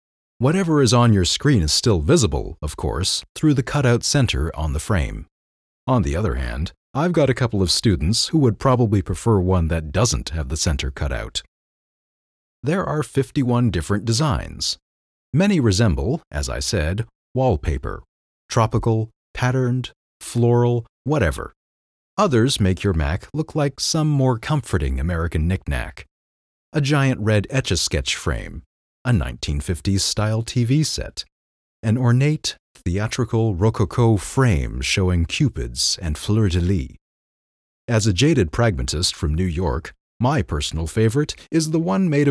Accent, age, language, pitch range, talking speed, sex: American, 40-59, English, 75-120 Hz, 140 wpm, male